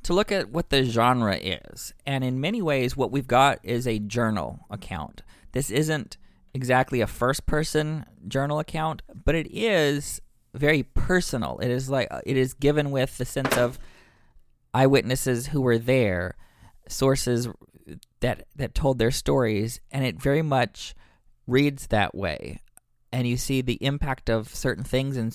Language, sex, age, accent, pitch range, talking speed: English, male, 20-39, American, 115-135 Hz, 155 wpm